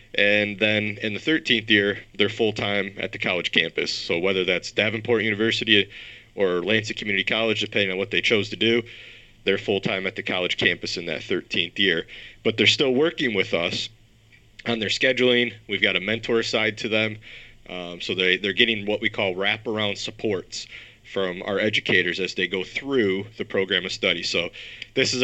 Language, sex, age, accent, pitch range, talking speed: English, male, 30-49, American, 100-120 Hz, 185 wpm